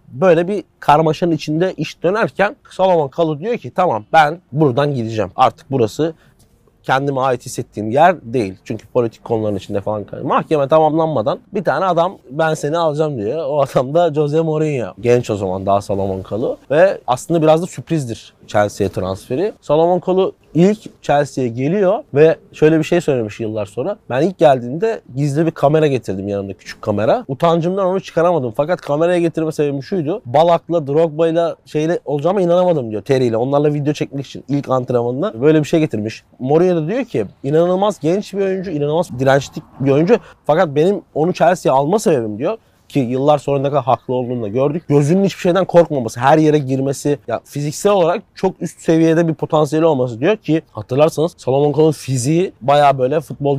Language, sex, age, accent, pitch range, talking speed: Turkish, male, 30-49, native, 125-165 Hz, 170 wpm